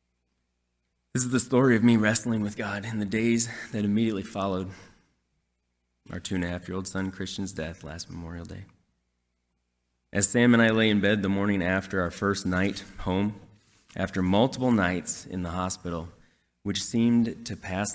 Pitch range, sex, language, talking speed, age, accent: 80-100 Hz, male, English, 155 wpm, 20-39, American